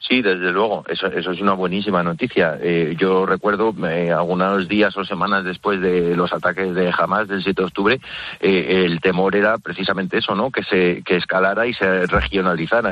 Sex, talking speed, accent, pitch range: male, 190 wpm, Spanish, 90-100 Hz